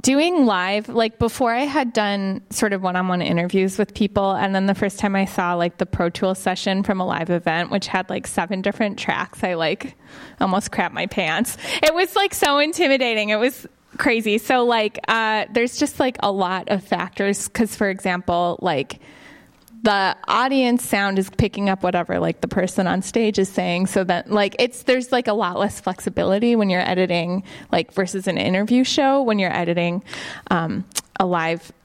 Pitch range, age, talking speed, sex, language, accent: 185-220 Hz, 10-29, 190 wpm, female, English, American